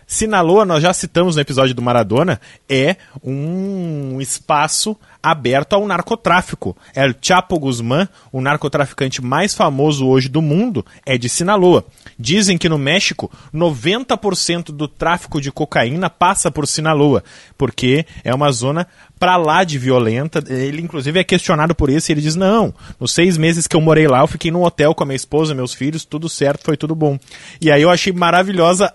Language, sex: Portuguese, male